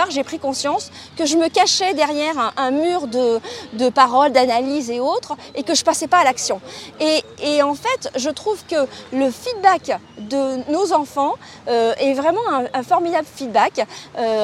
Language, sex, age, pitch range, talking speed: English, female, 40-59, 250-320 Hz, 180 wpm